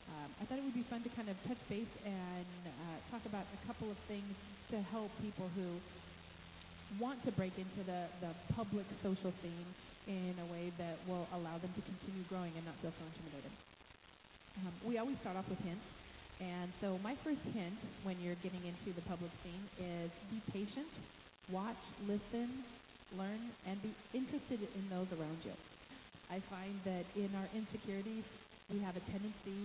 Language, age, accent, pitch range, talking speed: English, 30-49, American, 180-210 Hz, 180 wpm